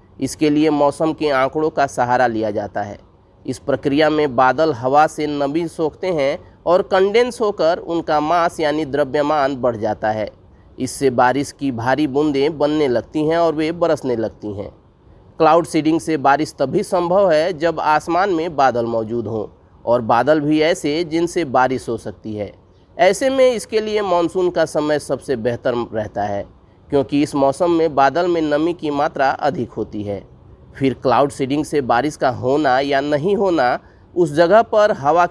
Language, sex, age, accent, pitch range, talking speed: Hindi, male, 30-49, native, 125-165 Hz, 170 wpm